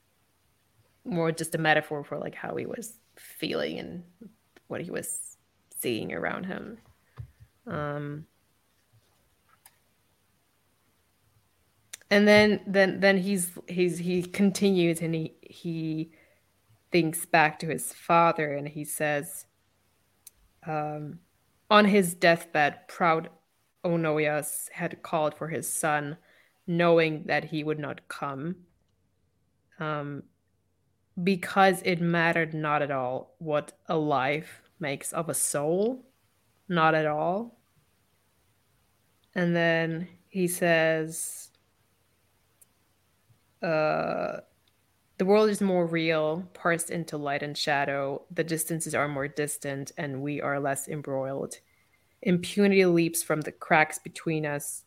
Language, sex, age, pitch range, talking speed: English, female, 20-39, 120-170 Hz, 115 wpm